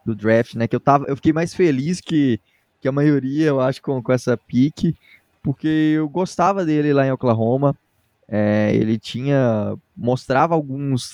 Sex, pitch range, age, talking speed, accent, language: male, 115-150 Hz, 20-39, 170 wpm, Brazilian, Portuguese